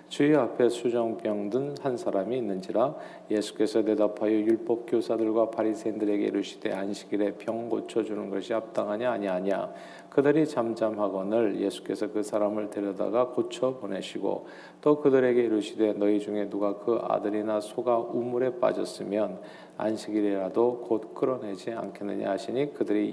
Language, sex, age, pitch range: Korean, male, 40-59, 105-125 Hz